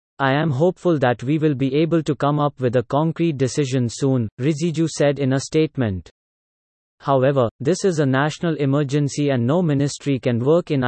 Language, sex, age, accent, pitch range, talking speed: English, male, 30-49, Indian, 130-155 Hz, 180 wpm